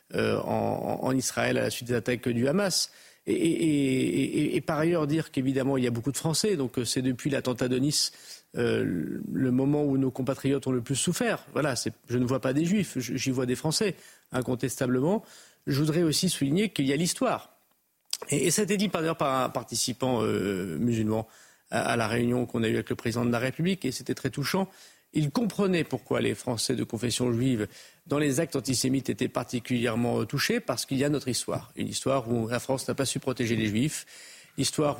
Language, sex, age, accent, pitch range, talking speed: French, male, 40-59, French, 125-150 Hz, 215 wpm